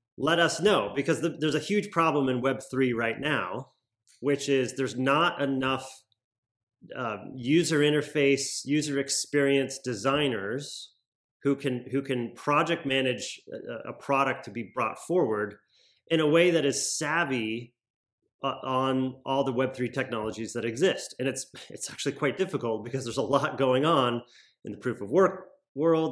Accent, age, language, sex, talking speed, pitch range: American, 30-49, English, male, 160 wpm, 120-140 Hz